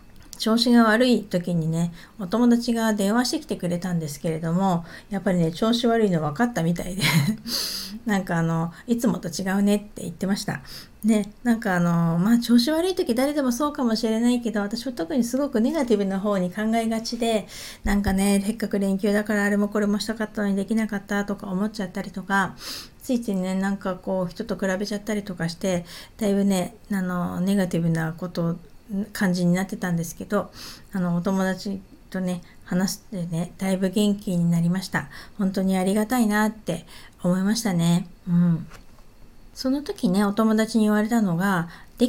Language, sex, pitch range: Japanese, female, 180-220 Hz